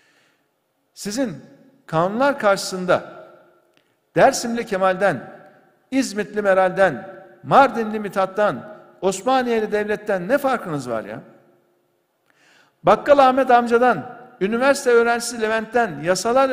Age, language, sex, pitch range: 60-79, Turkish, male, 190-240 Hz